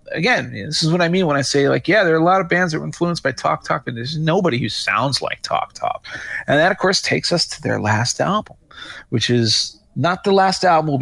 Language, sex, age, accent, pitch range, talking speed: English, male, 30-49, American, 120-155 Hz, 260 wpm